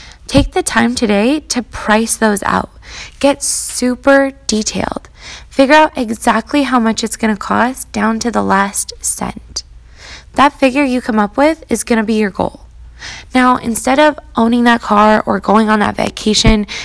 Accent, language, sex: American, English, female